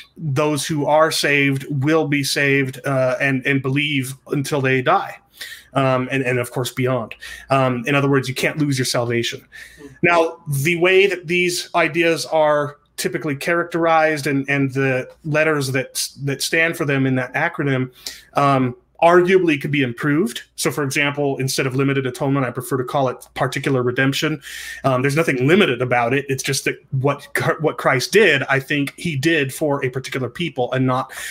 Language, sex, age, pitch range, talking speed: English, male, 30-49, 135-160 Hz, 175 wpm